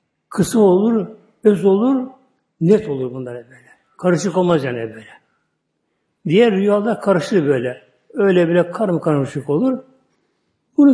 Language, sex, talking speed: Turkish, male, 130 wpm